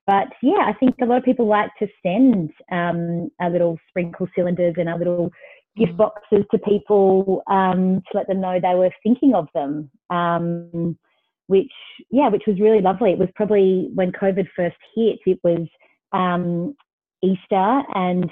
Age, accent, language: 30-49, Australian, English